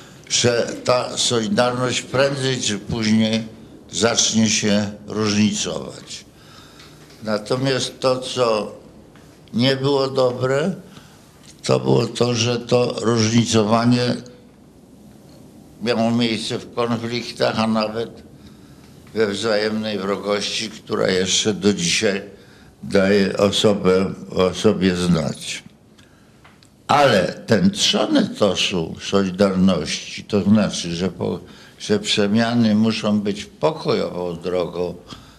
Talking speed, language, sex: 90 wpm, Polish, male